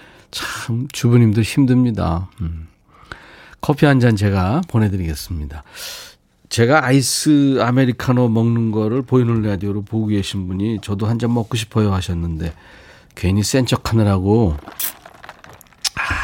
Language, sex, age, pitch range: Korean, male, 40-59, 95-130 Hz